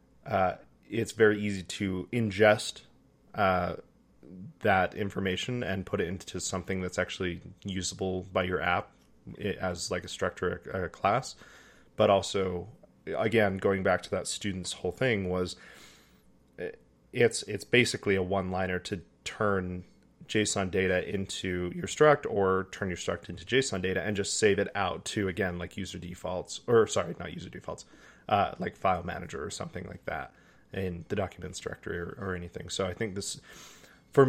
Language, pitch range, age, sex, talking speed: English, 90-110 Hz, 20-39, male, 165 wpm